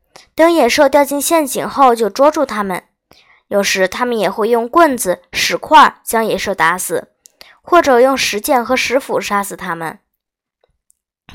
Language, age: Chinese, 10-29